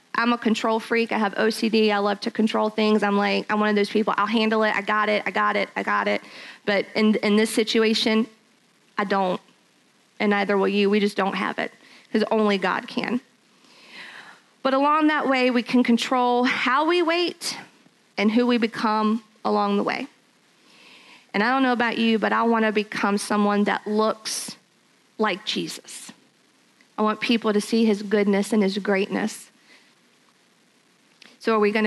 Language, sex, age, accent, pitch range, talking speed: English, female, 40-59, American, 205-230 Hz, 185 wpm